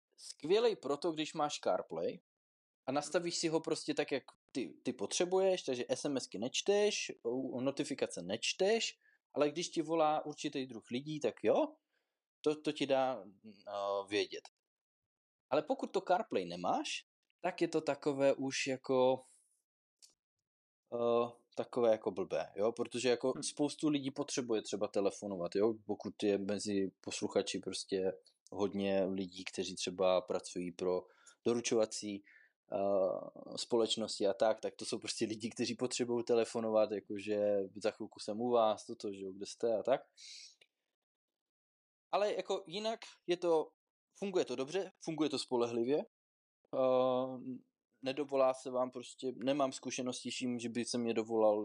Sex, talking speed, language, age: male, 135 wpm, Czech, 20-39